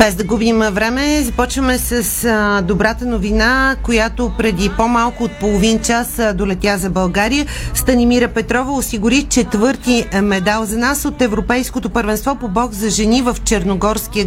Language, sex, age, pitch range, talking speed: Bulgarian, female, 40-59, 205-250 Hz, 140 wpm